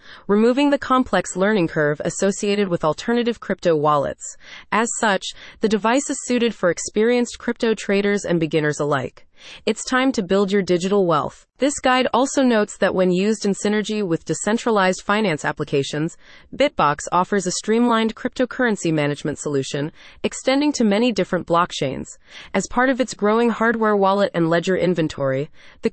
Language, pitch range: English, 170-235 Hz